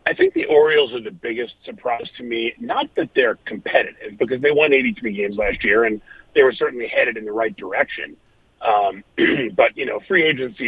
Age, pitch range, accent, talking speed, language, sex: 40-59, 115-175 Hz, American, 200 wpm, English, male